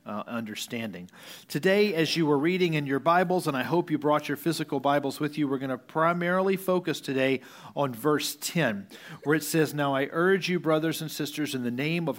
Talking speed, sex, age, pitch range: 210 wpm, male, 40-59, 135-175 Hz